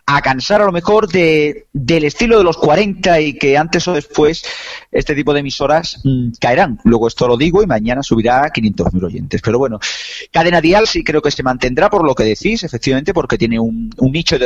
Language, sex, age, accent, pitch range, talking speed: Spanish, male, 30-49, Spanish, 120-165 Hz, 215 wpm